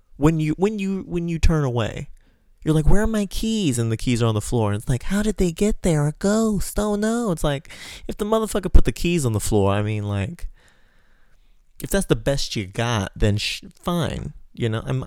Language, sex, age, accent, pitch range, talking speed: English, male, 20-39, American, 105-150 Hz, 235 wpm